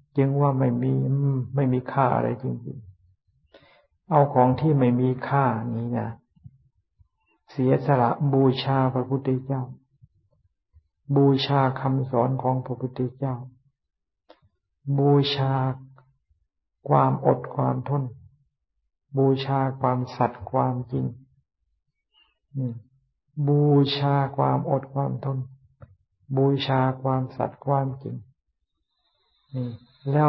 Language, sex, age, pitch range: Thai, male, 60-79, 120-140 Hz